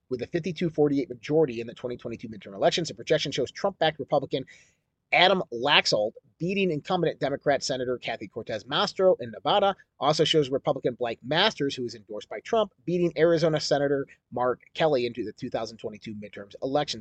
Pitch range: 125-175 Hz